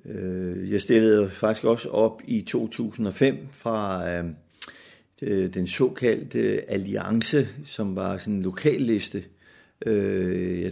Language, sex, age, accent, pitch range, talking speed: Danish, male, 60-79, native, 90-115 Hz, 90 wpm